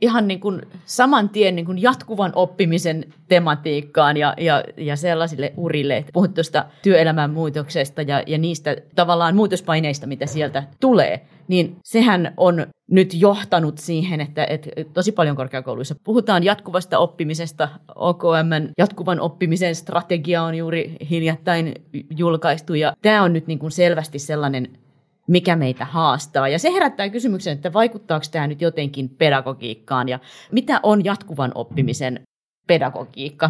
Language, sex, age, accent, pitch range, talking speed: Finnish, female, 30-49, native, 145-185 Hz, 135 wpm